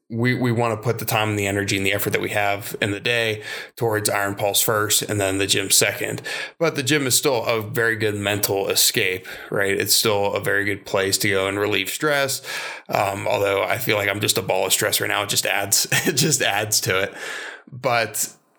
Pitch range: 100-120 Hz